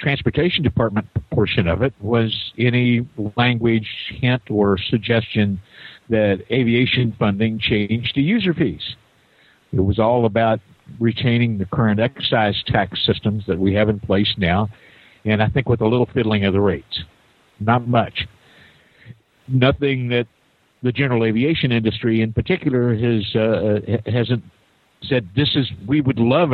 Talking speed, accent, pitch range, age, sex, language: 140 wpm, American, 100-125 Hz, 50-69, male, English